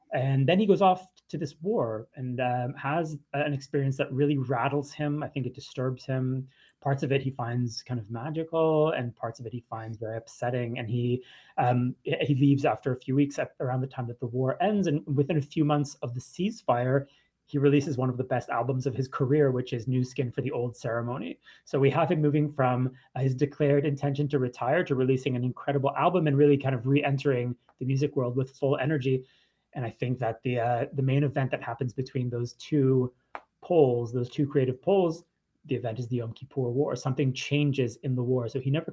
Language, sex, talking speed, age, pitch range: English, male, 220 wpm, 30-49, 125-145 Hz